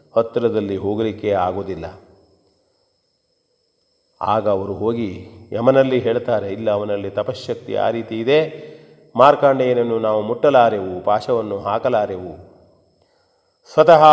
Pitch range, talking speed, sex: 100-145 Hz, 85 wpm, male